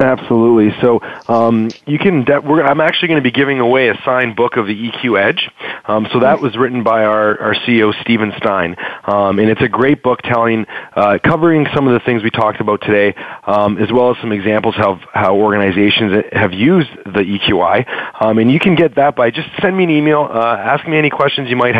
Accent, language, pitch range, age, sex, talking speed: American, English, 110-145 Hz, 30-49, male, 225 wpm